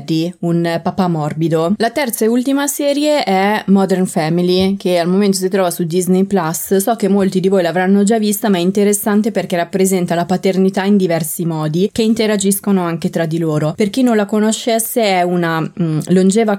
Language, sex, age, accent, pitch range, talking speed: Italian, female, 20-39, native, 165-200 Hz, 185 wpm